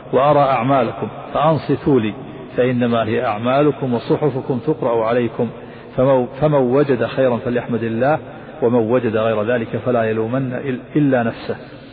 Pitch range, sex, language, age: 120-145 Hz, male, Arabic, 50-69